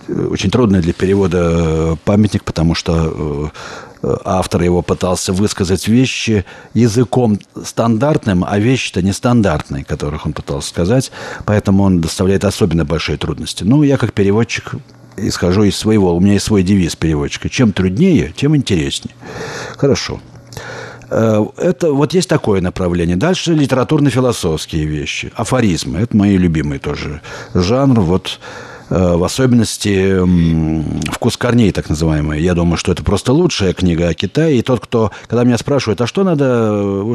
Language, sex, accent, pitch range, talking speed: Russian, male, native, 90-120 Hz, 135 wpm